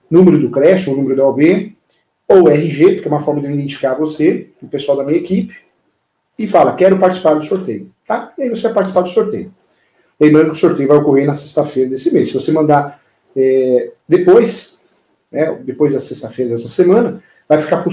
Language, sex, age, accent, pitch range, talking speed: Portuguese, male, 40-59, Brazilian, 145-185 Hz, 200 wpm